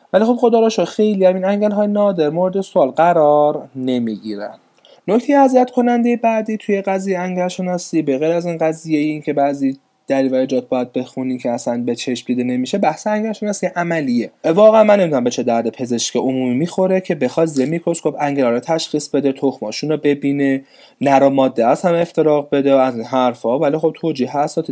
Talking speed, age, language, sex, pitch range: 180 wpm, 30-49, Persian, male, 125-170 Hz